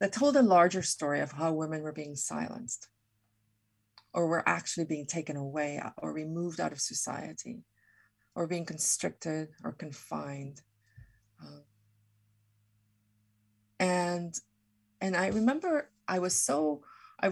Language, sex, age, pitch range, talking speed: English, female, 30-49, 145-185 Hz, 125 wpm